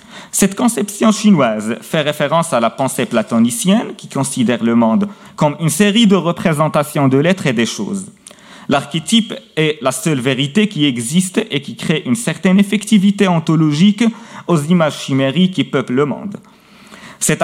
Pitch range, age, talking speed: 145-205 Hz, 40-59, 155 wpm